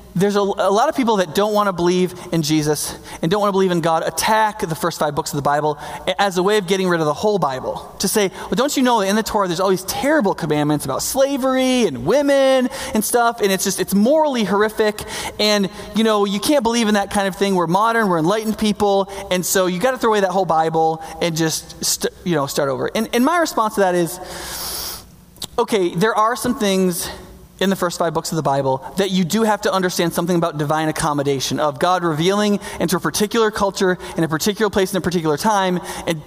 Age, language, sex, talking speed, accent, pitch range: 20-39, English, male, 240 wpm, American, 170-220 Hz